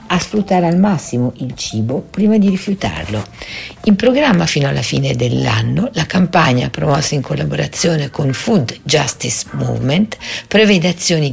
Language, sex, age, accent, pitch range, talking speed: Italian, female, 50-69, native, 125-180 Hz, 140 wpm